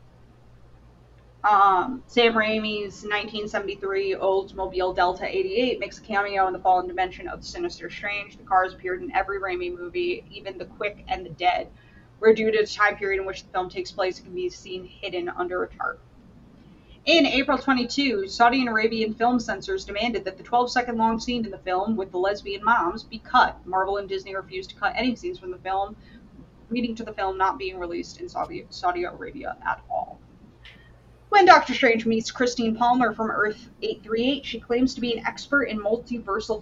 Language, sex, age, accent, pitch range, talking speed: English, female, 20-39, American, 190-245 Hz, 190 wpm